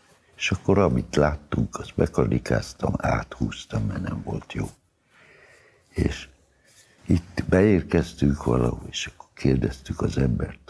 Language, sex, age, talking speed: Hungarian, male, 60-79, 110 wpm